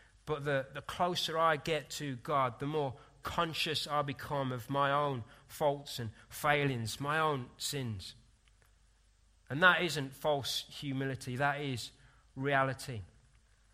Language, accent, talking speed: English, British, 130 wpm